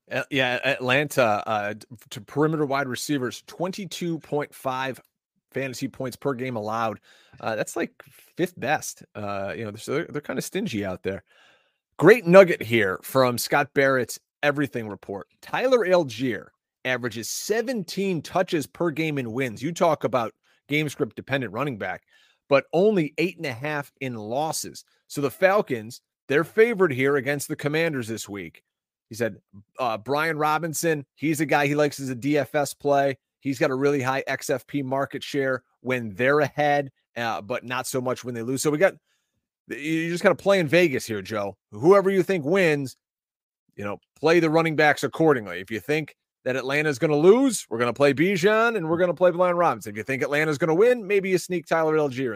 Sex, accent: male, American